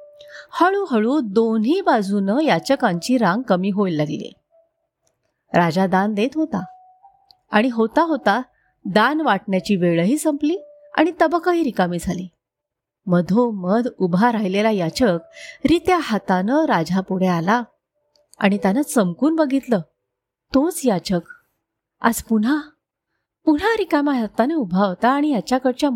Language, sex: Marathi, female